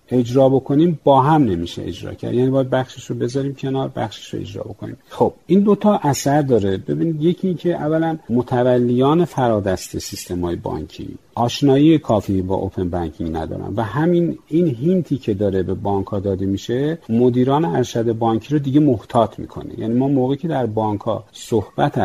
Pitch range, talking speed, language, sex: 105-130 Hz, 170 wpm, Persian, male